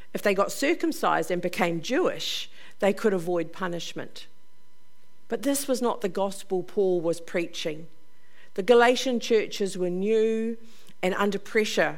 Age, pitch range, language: 50-69, 180-230 Hz, English